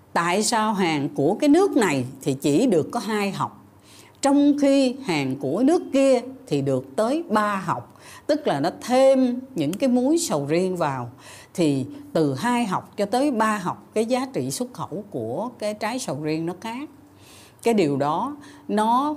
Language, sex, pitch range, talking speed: Vietnamese, female, 145-235 Hz, 180 wpm